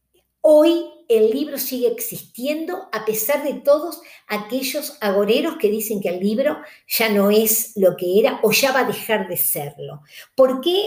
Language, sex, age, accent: Spanish, female, 50-69, Argentinian